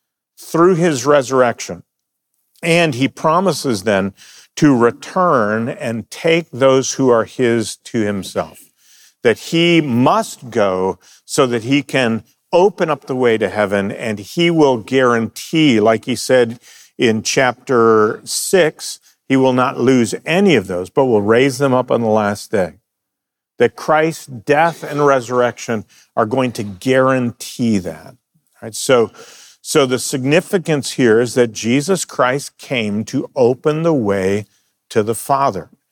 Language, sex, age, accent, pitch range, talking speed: English, male, 50-69, American, 115-155 Hz, 145 wpm